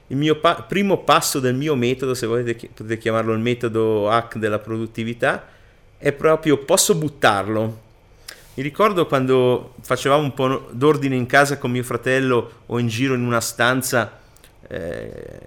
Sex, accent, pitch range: male, native, 115-145 Hz